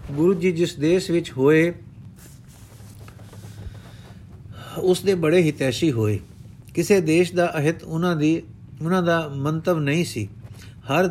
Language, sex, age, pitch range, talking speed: Punjabi, male, 50-69, 125-170 Hz, 125 wpm